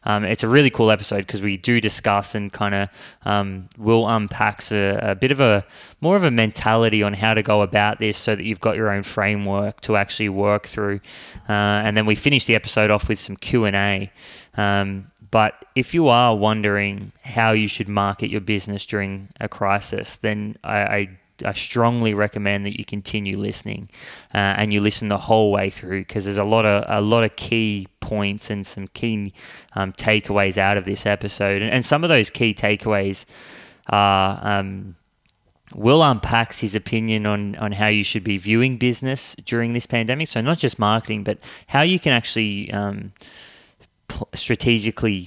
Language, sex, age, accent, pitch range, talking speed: English, male, 20-39, Australian, 100-110 Hz, 185 wpm